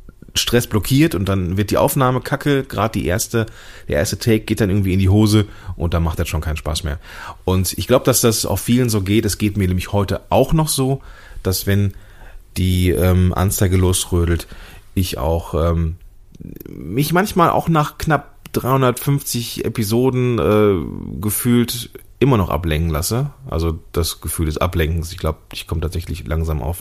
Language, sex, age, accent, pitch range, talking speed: German, male, 30-49, German, 85-110 Hz, 175 wpm